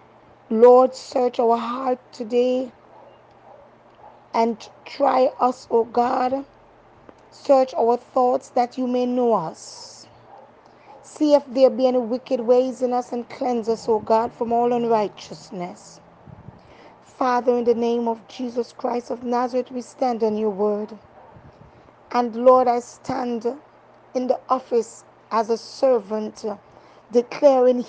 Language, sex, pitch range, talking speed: English, female, 225-255 Hz, 130 wpm